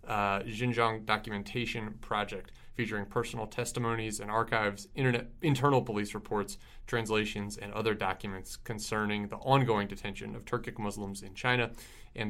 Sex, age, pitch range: male, 20-39, 105-125 Hz